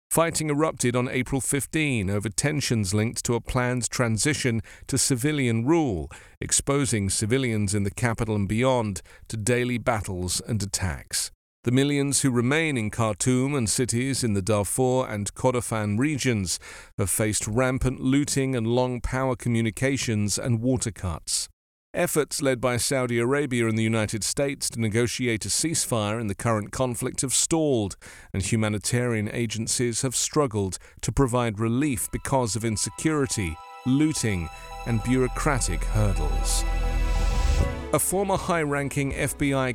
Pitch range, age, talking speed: 105-135 Hz, 40-59, 135 wpm